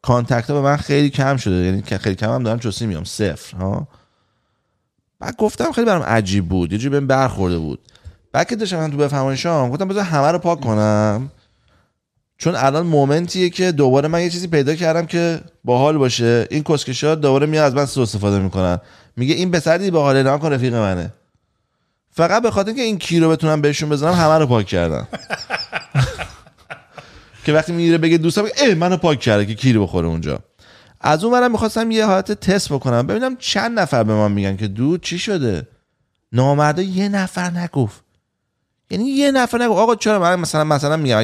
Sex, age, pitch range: male, 30-49, 110-165 Hz